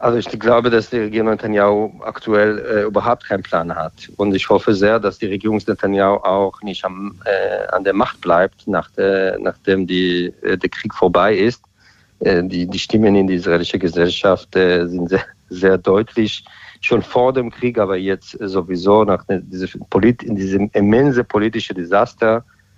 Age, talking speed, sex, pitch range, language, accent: 50-69, 175 wpm, male, 95-110 Hz, German, German